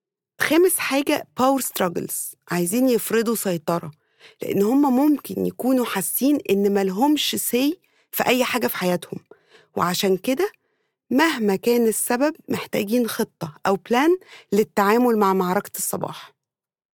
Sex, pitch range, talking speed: female, 190-255 Hz, 120 wpm